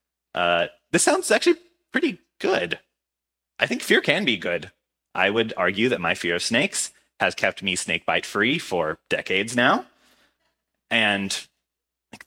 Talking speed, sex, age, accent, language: 150 wpm, male, 30-49, American, English